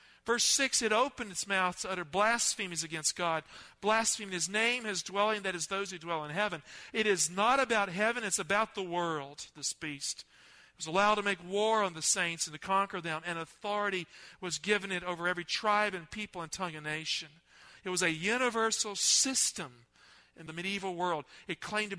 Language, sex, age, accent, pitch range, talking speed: English, male, 50-69, American, 160-210 Hz, 200 wpm